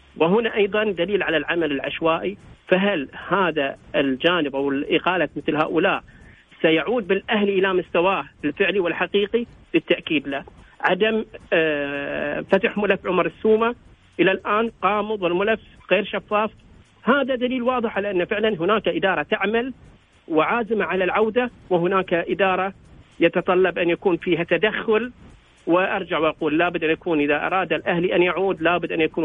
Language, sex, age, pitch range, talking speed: English, male, 40-59, 160-210 Hz, 130 wpm